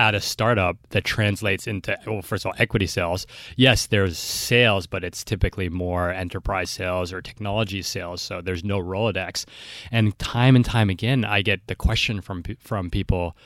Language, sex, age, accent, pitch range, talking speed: English, male, 30-49, American, 95-115 Hz, 180 wpm